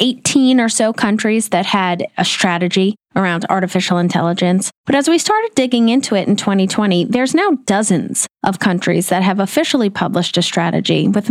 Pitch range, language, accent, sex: 190-260 Hz, English, American, female